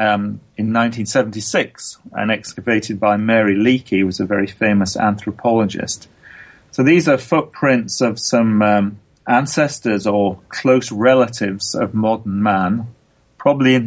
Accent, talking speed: British, 130 wpm